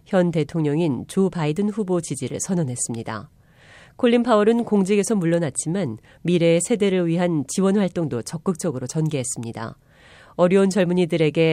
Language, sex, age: Korean, female, 40-59